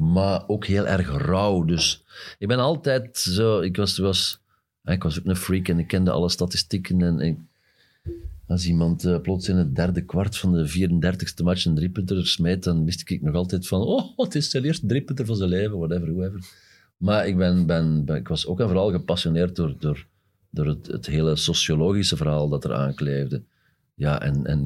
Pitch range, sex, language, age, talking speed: 80-100 Hz, male, Dutch, 40-59, 195 wpm